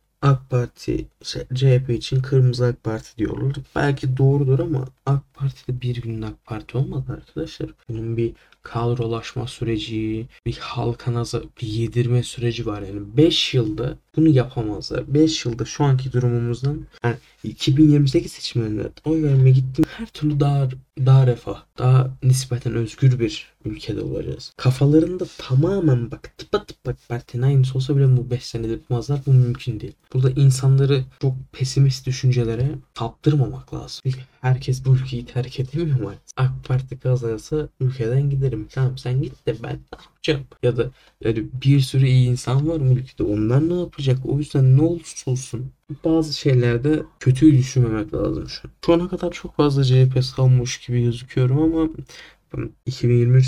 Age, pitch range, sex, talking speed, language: 10-29, 120-140 Hz, male, 150 wpm, Turkish